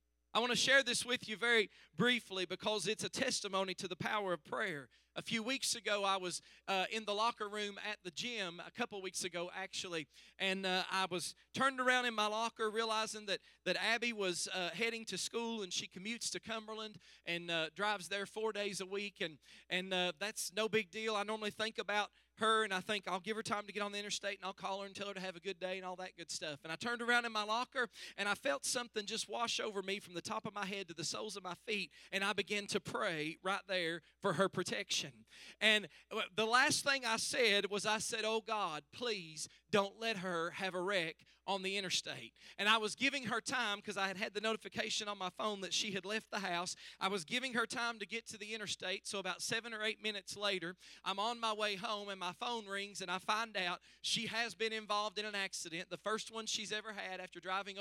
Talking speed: 240 wpm